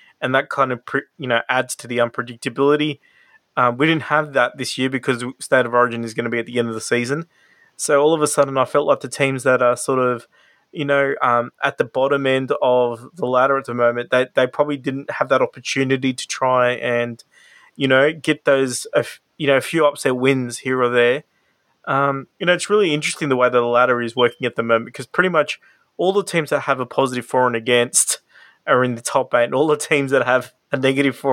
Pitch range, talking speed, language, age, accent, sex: 120-145 Hz, 240 wpm, English, 20-39, Australian, male